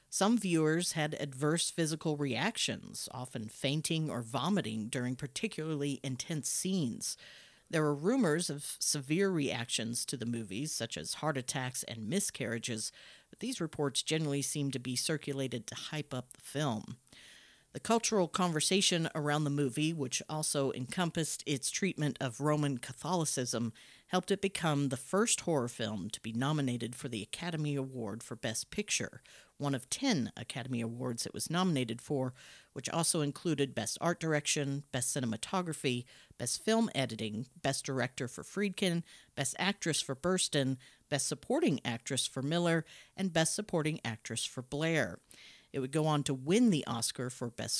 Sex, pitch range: female, 125-165 Hz